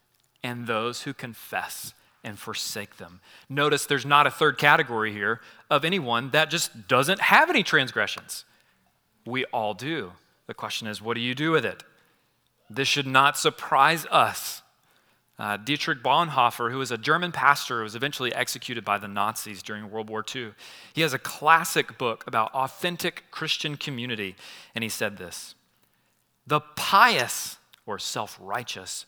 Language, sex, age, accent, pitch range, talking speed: English, male, 30-49, American, 120-165 Hz, 155 wpm